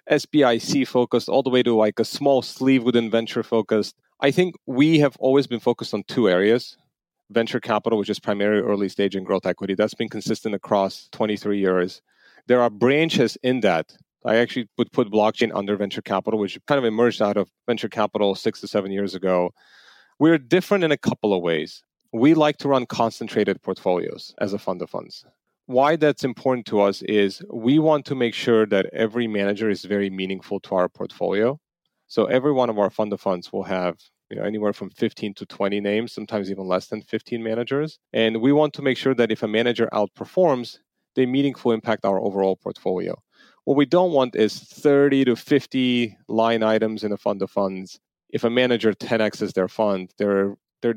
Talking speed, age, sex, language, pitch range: 195 wpm, 30-49, male, English, 100-125 Hz